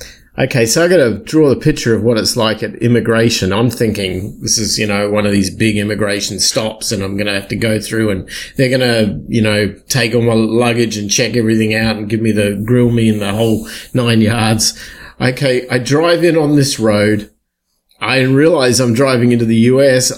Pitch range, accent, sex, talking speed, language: 110-140 Hz, Australian, male, 215 wpm, English